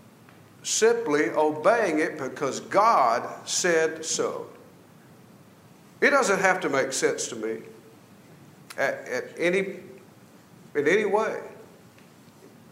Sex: male